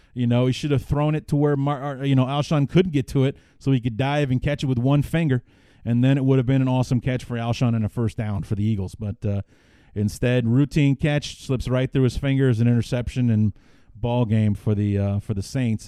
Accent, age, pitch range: American, 30-49, 105-135 Hz